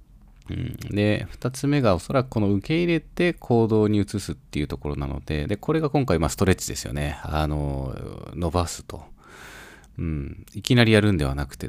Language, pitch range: Japanese, 75-105 Hz